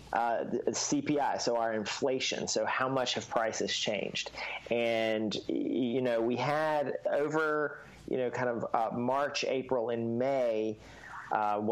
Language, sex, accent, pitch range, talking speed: English, male, American, 110-135 Hz, 140 wpm